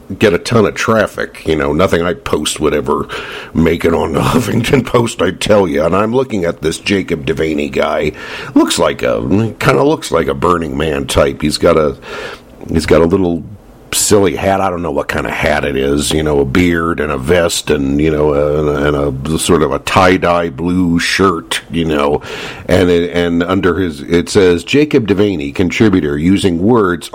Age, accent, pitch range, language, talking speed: 50-69, American, 85-110 Hz, English, 205 wpm